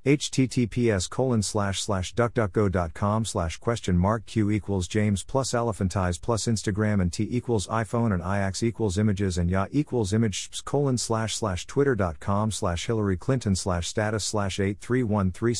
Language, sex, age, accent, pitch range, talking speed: English, male, 50-69, American, 95-115 Hz, 190 wpm